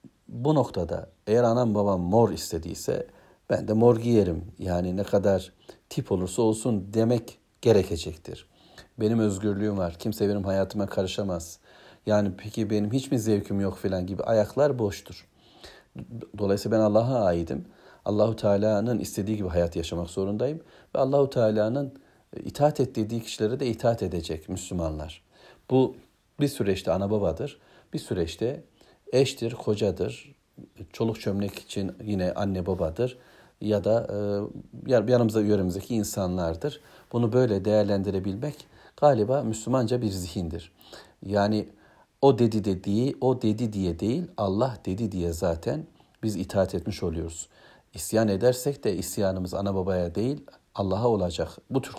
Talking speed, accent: 130 wpm, native